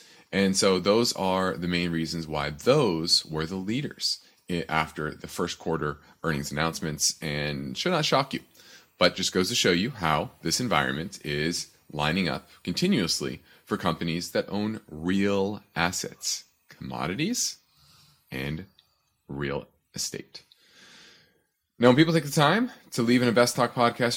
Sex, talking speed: male, 140 wpm